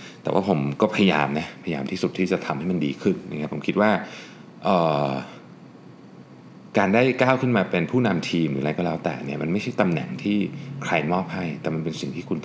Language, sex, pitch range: Thai, male, 75-115 Hz